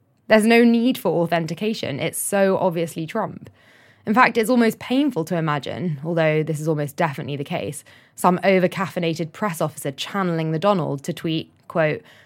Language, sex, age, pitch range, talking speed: English, female, 10-29, 165-230 Hz, 160 wpm